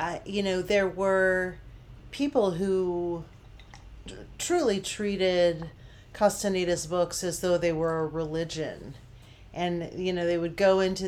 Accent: American